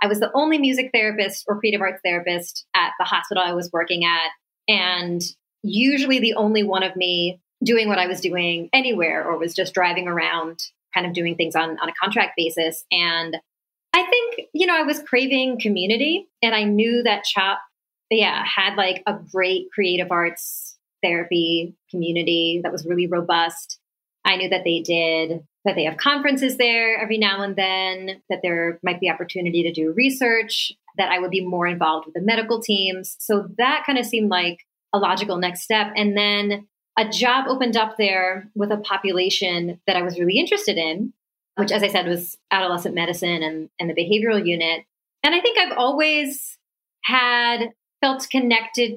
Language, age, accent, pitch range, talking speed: English, 30-49, American, 175-225 Hz, 185 wpm